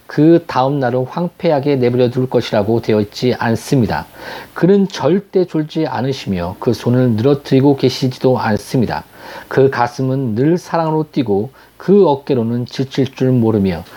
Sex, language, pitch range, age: male, Korean, 125-160 Hz, 40-59